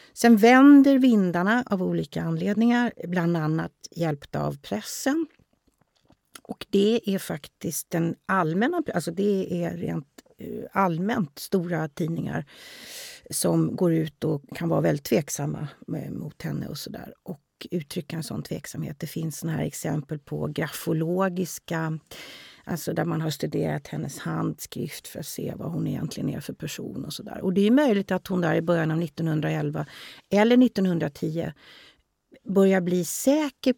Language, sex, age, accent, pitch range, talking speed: Swedish, female, 30-49, native, 160-205 Hz, 145 wpm